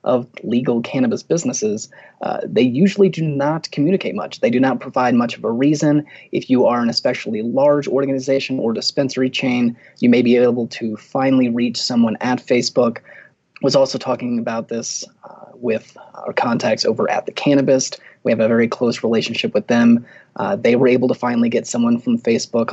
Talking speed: 185 wpm